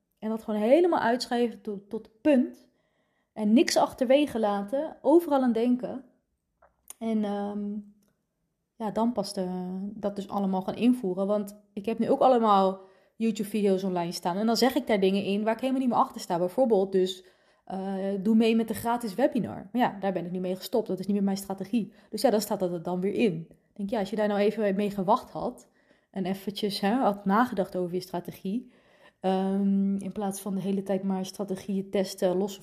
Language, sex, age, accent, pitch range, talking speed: Dutch, female, 20-39, Dutch, 190-225 Hz, 200 wpm